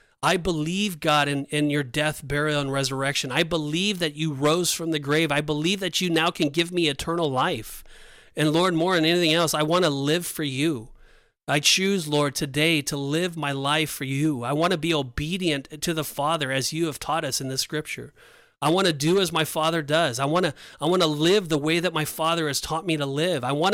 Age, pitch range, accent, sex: 40-59, 140-170 Hz, American, male